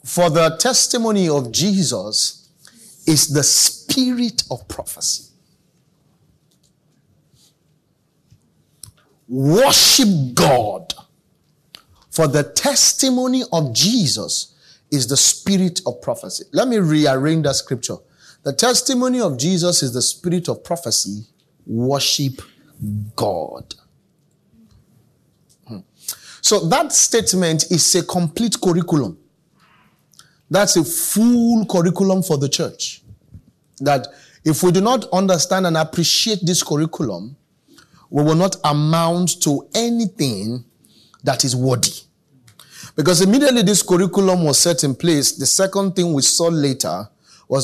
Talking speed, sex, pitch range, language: 110 wpm, male, 135-185 Hz, English